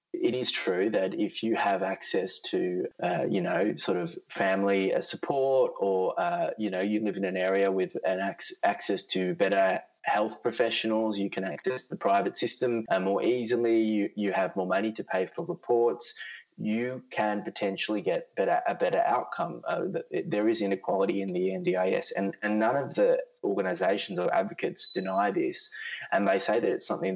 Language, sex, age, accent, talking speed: English, male, 20-39, Australian, 180 wpm